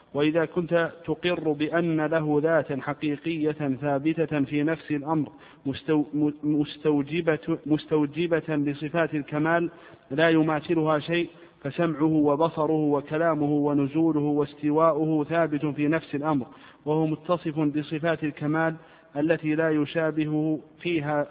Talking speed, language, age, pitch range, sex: 100 wpm, Arabic, 50-69, 145-160 Hz, male